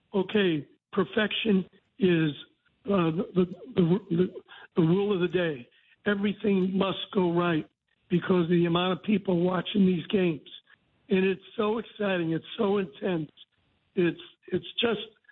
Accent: American